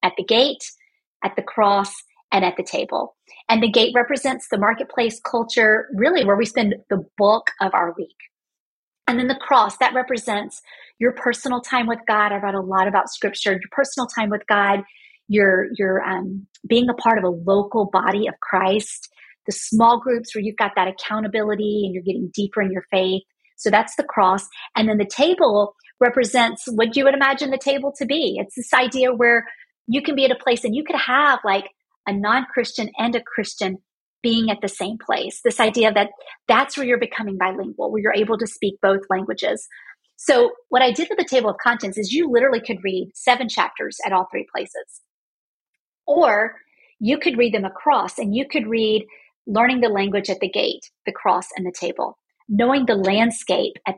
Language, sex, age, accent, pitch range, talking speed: English, female, 40-59, American, 200-255 Hz, 195 wpm